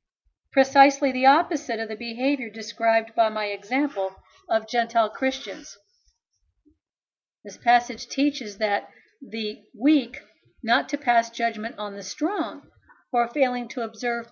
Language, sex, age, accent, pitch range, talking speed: English, female, 50-69, American, 205-260 Hz, 125 wpm